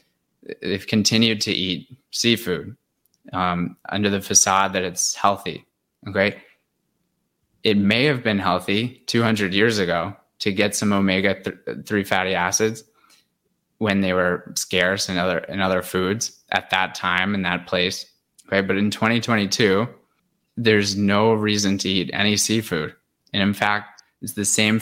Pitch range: 95-110 Hz